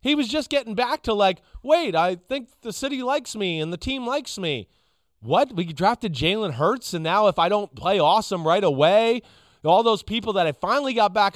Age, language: 30-49, English